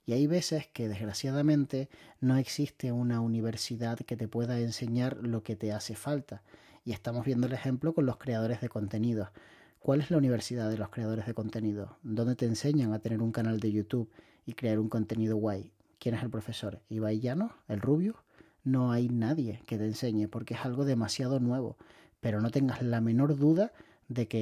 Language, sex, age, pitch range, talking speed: Spanish, male, 30-49, 110-140 Hz, 190 wpm